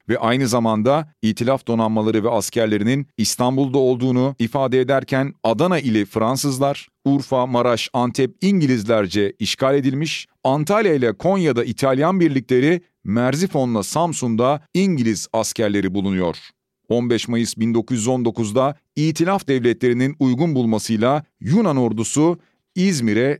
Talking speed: 105 wpm